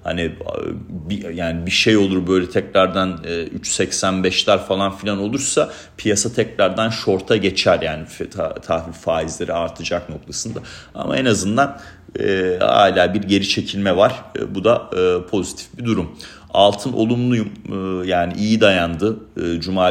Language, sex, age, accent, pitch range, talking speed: Turkish, male, 40-59, native, 85-100 Hz, 120 wpm